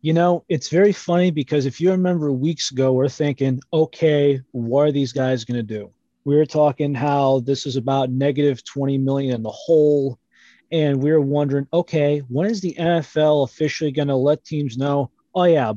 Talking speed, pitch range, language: 200 wpm, 135-180 Hz, English